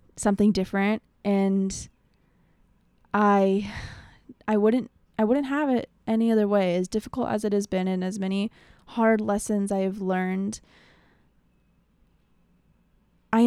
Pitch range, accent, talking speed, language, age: 195-220 Hz, American, 125 wpm, English, 20-39